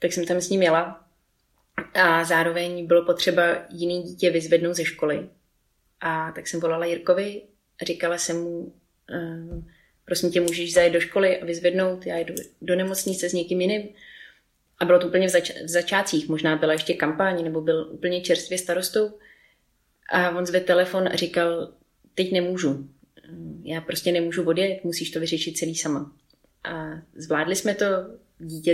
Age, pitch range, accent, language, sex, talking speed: 30-49, 160-180 Hz, native, Czech, female, 160 wpm